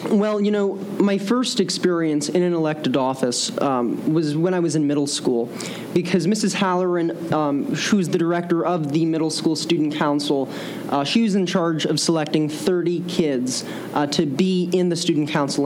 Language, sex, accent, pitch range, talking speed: English, male, American, 150-180 Hz, 180 wpm